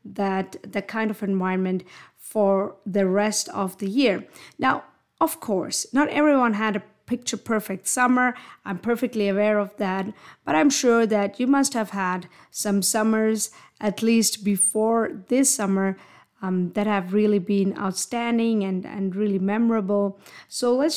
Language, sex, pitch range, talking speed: English, female, 195-245 Hz, 150 wpm